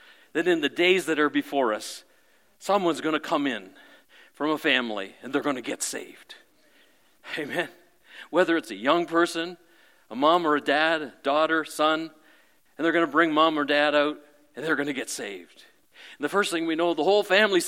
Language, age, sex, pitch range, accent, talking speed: English, 50-69, male, 155-220 Hz, American, 195 wpm